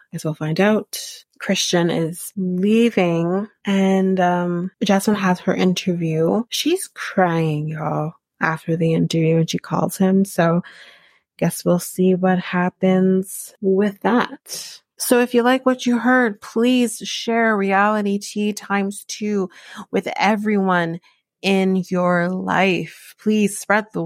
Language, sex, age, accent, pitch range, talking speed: English, female, 30-49, American, 180-215 Hz, 130 wpm